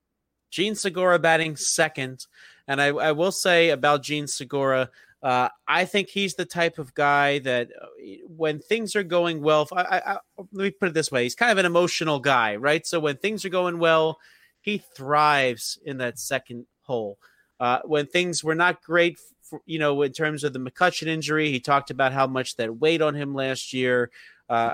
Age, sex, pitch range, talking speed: 30-49, male, 135-170 Hz, 185 wpm